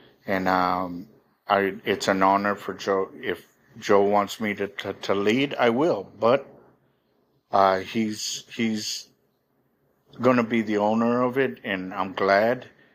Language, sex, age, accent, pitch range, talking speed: English, male, 50-69, American, 95-110 Hz, 150 wpm